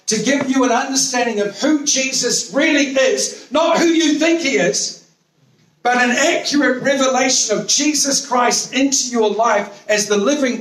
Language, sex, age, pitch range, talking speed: English, male, 50-69, 155-225 Hz, 165 wpm